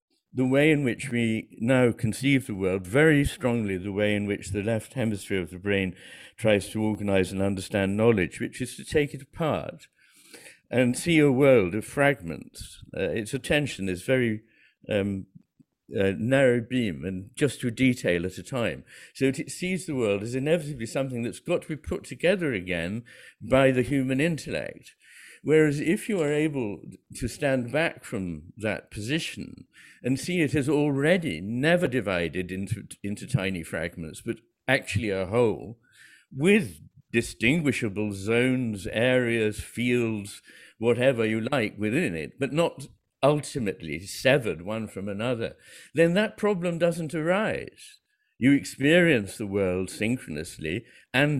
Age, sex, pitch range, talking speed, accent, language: 60-79, male, 100-145 Hz, 150 wpm, British, English